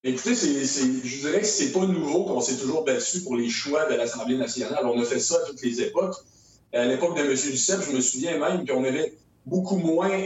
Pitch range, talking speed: 130-195 Hz, 240 wpm